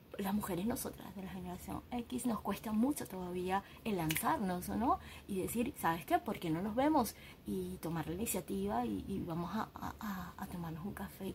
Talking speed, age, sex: 200 wpm, 20-39, female